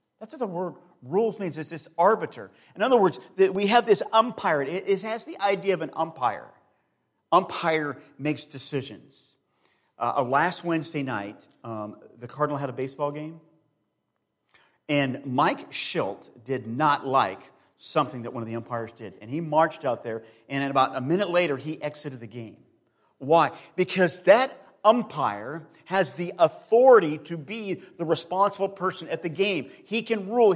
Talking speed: 160 wpm